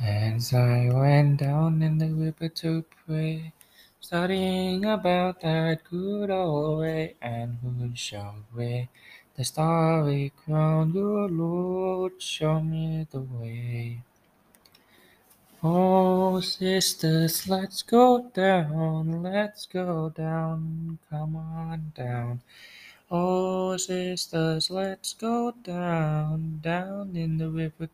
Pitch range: 140-185 Hz